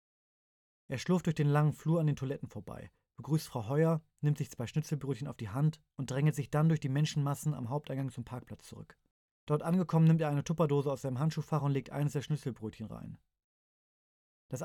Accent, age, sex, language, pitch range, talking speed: German, 30-49, male, German, 130-165 Hz, 195 wpm